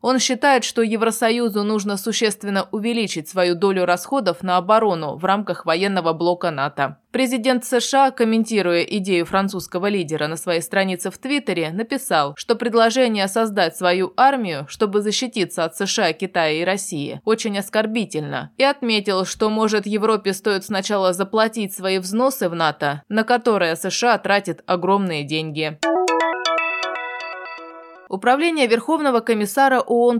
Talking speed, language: 130 wpm, Russian